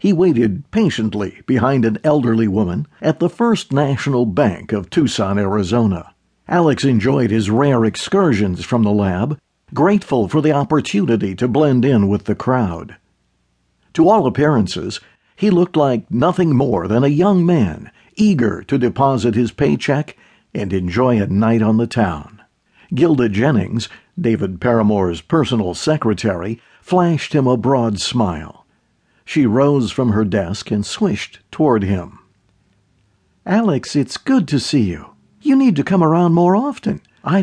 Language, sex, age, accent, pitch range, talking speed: English, male, 60-79, American, 105-155 Hz, 145 wpm